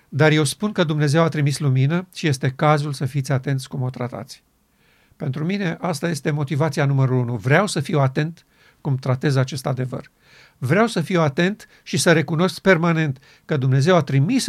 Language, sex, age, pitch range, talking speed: Romanian, male, 50-69, 140-170 Hz, 180 wpm